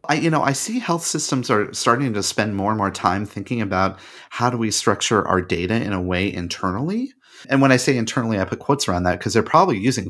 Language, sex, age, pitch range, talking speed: English, male, 30-49, 100-130 Hz, 245 wpm